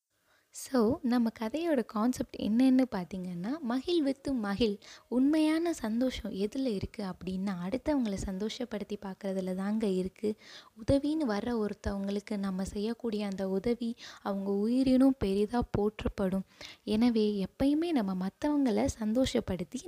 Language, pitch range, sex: Tamil, 195-260 Hz, female